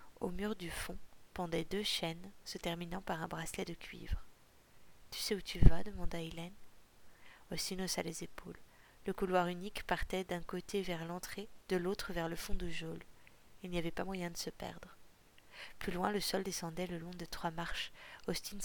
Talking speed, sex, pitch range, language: 195 wpm, female, 170-195 Hz, French